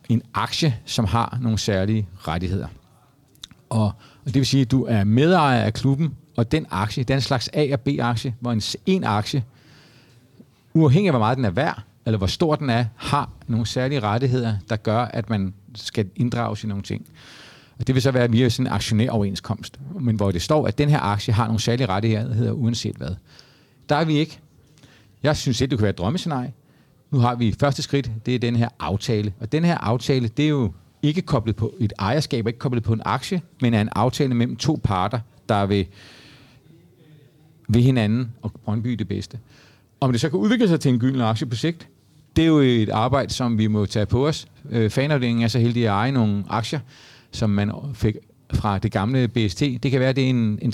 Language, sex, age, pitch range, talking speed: Danish, male, 40-59, 110-140 Hz, 210 wpm